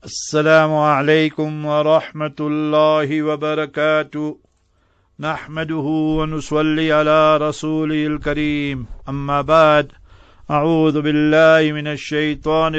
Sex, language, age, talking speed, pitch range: male, English, 50-69, 75 wpm, 145-155 Hz